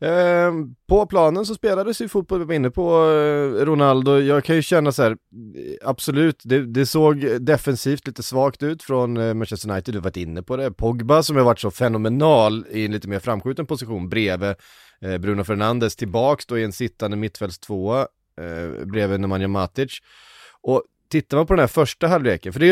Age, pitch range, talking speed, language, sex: 30-49, 105-145 Hz, 185 wpm, Swedish, male